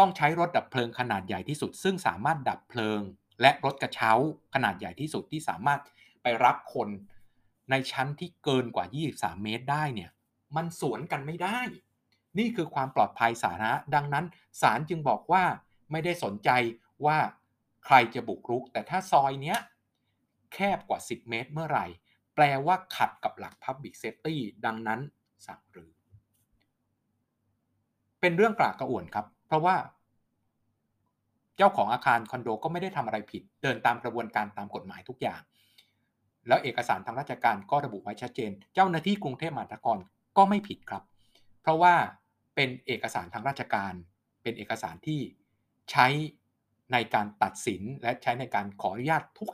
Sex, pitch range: male, 110-150 Hz